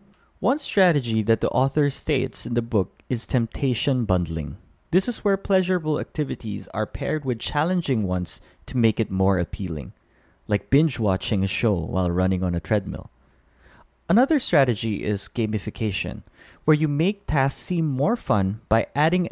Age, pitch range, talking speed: 20-39, 95-140 Hz, 155 wpm